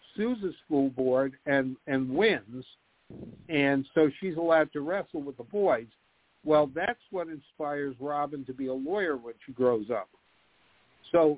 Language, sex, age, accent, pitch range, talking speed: English, male, 60-79, American, 130-165 Hz, 155 wpm